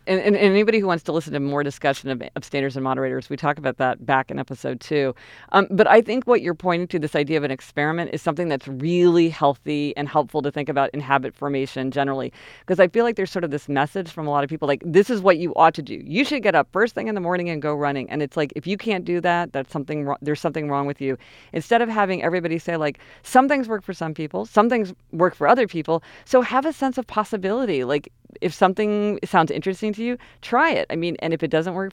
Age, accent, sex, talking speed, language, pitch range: 40-59, American, female, 260 wpm, English, 145-195 Hz